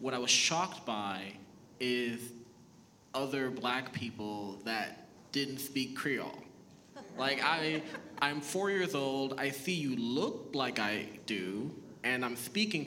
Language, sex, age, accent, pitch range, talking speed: English, male, 20-39, American, 115-135 Hz, 140 wpm